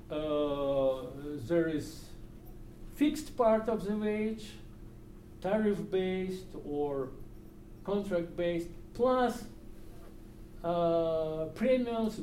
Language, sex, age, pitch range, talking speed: English, male, 50-69, 125-195 Hz, 80 wpm